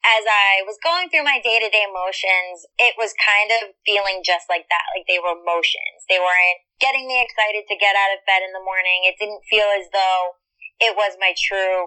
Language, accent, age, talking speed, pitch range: English, American, 20-39, 210 wpm, 185-220 Hz